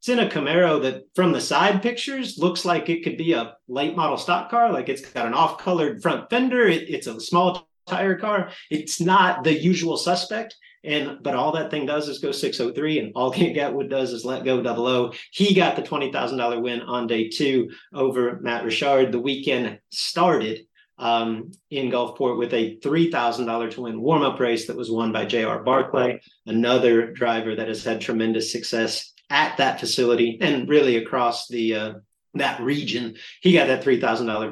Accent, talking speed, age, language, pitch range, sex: American, 190 wpm, 40-59, English, 115-160 Hz, male